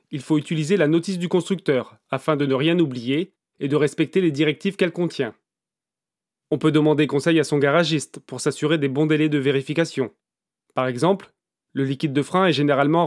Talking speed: 190 wpm